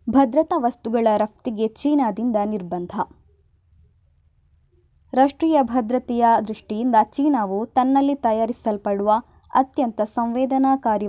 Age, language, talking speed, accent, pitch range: 20-39, Kannada, 70 wpm, native, 210-260 Hz